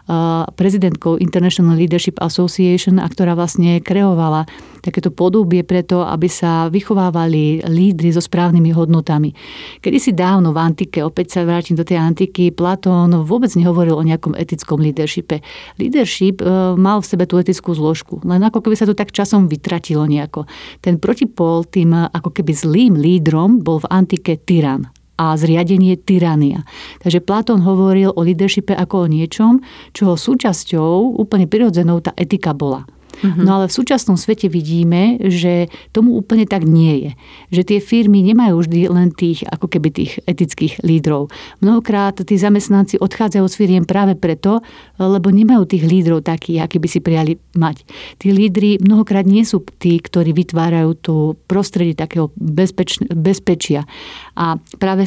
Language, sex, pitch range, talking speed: Slovak, female, 165-195 Hz, 150 wpm